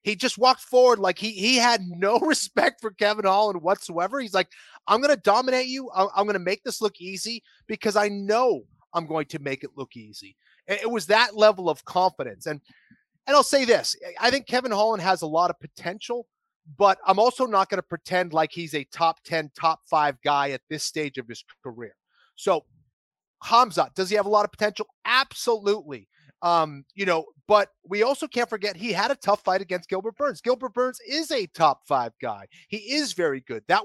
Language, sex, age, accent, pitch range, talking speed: English, male, 30-49, American, 170-230 Hz, 210 wpm